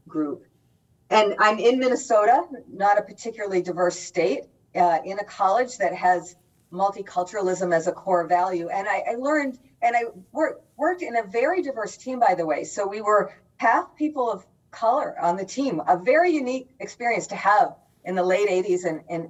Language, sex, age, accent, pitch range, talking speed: English, female, 40-59, American, 180-255 Hz, 180 wpm